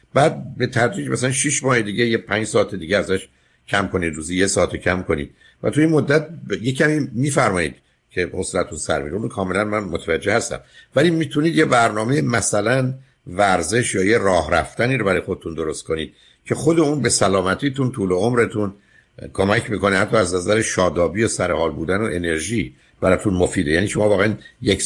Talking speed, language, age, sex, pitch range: 175 wpm, Persian, 60-79, male, 90-130 Hz